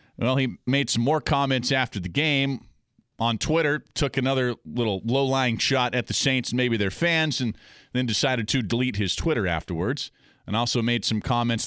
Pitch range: 105-130 Hz